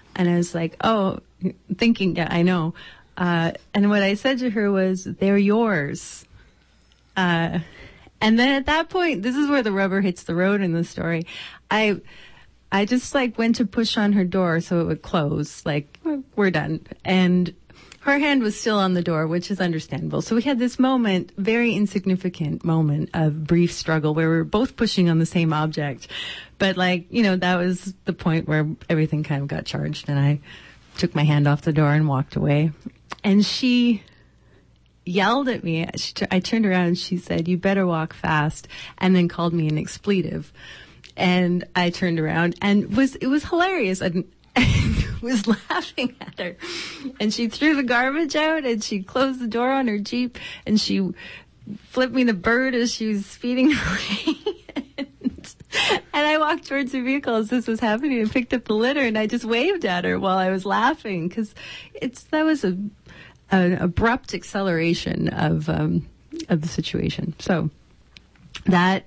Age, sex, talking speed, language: 30-49, female, 180 wpm, English